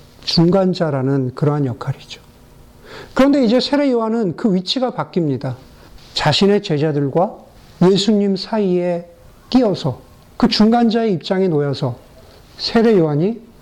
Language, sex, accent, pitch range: Korean, male, native, 150-210 Hz